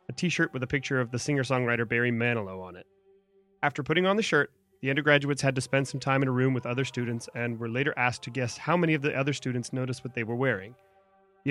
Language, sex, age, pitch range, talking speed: English, male, 30-49, 120-165 Hz, 250 wpm